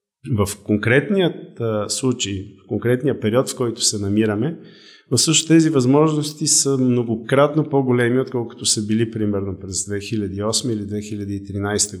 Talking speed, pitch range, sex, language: 120 wpm, 105-140 Hz, male, Bulgarian